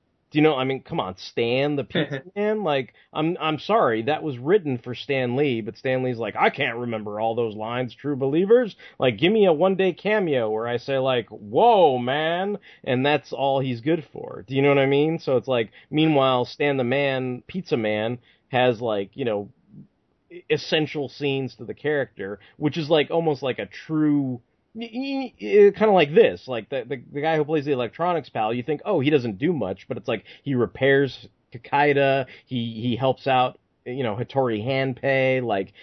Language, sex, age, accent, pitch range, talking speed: English, male, 30-49, American, 115-145 Hz, 200 wpm